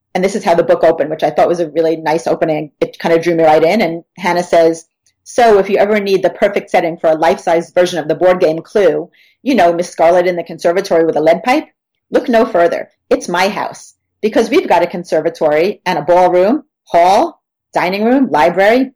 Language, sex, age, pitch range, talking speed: English, female, 40-59, 170-215 Hz, 225 wpm